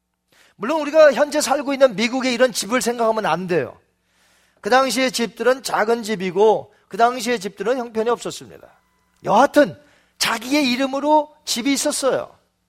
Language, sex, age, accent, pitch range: Korean, male, 40-59, native, 190-270 Hz